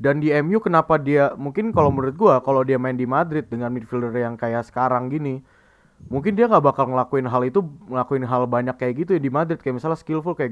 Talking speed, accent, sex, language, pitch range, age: 220 wpm, native, male, Indonesian, 125-175 Hz, 20-39